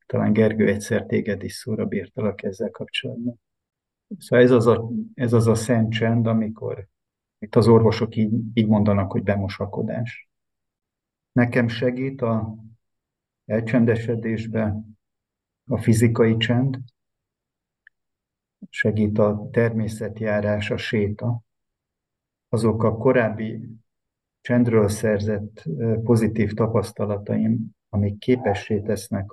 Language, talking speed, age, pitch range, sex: Hungarian, 100 wpm, 50-69, 105-115 Hz, male